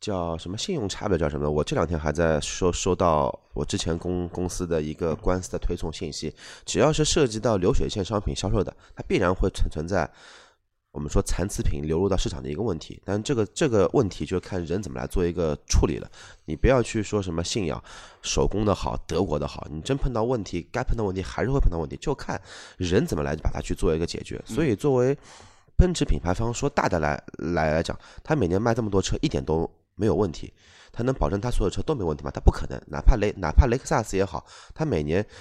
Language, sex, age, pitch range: Chinese, male, 20-39, 80-110 Hz